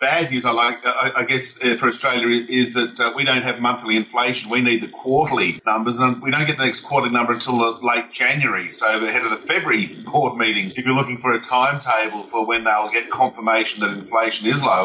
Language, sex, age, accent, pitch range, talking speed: English, male, 40-59, Australian, 115-140 Hz, 220 wpm